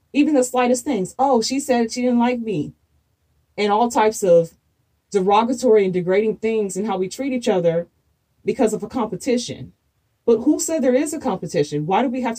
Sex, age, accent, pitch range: female, 30-49, American, 195-250 Hz